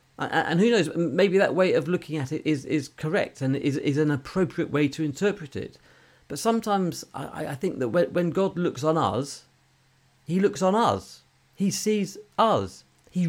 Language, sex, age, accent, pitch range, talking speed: English, male, 40-59, British, 125-180 Hz, 185 wpm